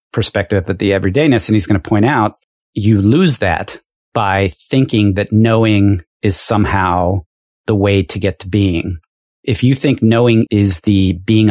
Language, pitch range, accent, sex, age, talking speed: English, 95-115 Hz, American, male, 40-59, 165 wpm